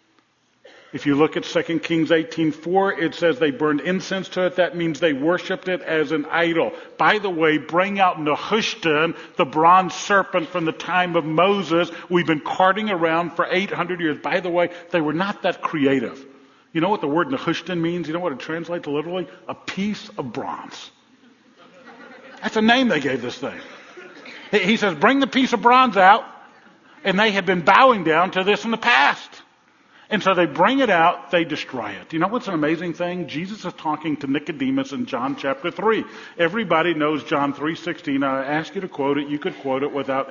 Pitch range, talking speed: 150-185 Hz, 200 wpm